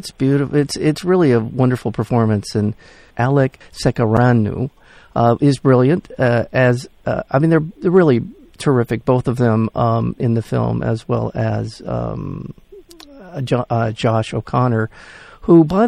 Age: 50-69